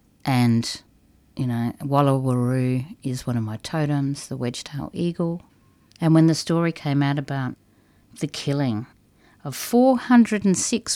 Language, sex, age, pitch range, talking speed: English, female, 50-69, 135-215 Hz, 130 wpm